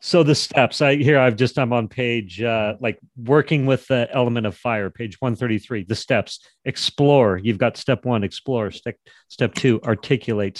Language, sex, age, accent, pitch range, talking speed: English, male, 40-59, American, 105-125 Hz, 180 wpm